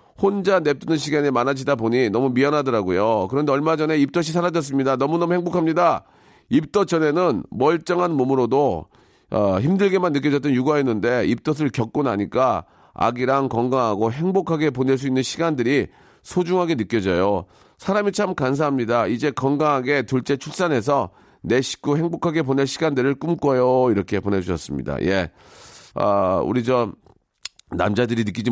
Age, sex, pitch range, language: 40-59, male, 115-165 Hz, Korean